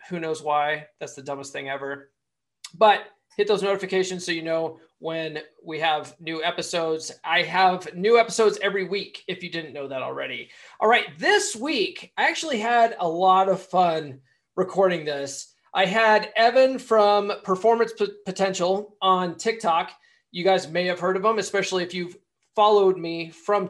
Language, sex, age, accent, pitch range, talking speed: English, male, 20-39, American, 165-210 Hz, 165 wpm